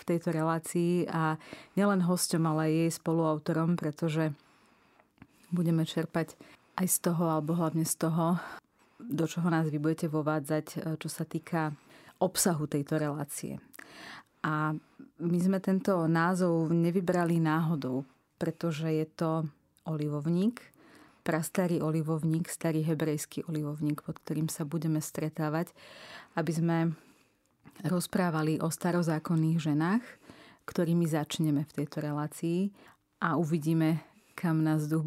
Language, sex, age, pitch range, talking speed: Slovak, female, 30-49, 155-170 Hz, 120 wpm